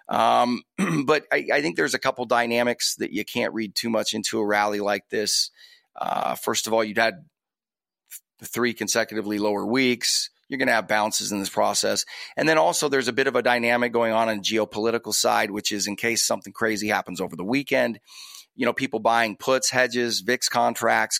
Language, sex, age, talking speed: English, male, 30-49, 205 wpm